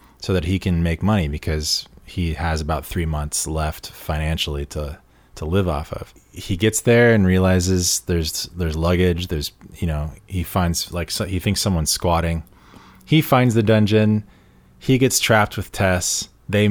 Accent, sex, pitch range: American, male, 90-105 Hz